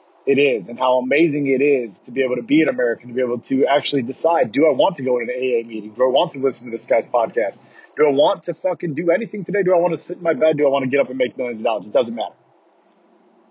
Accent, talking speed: American, 300 wpm